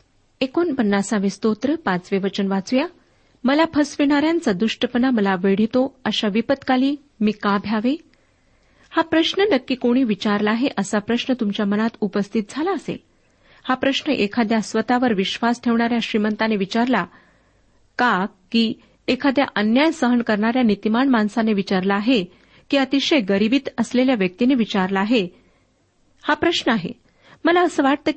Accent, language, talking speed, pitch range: native, Marathi, 130 wpm, 210-275 Hz